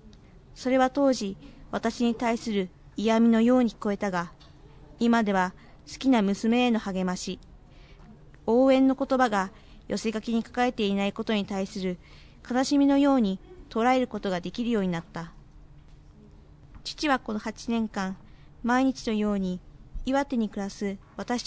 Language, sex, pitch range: Japanese, female, 200-250 Hz